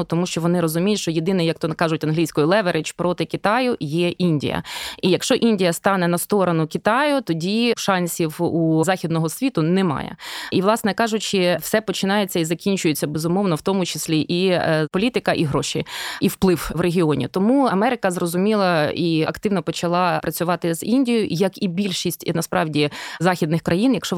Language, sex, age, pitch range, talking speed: Ukrainian, female, 20-39, 165-200 Hz, 160 wpm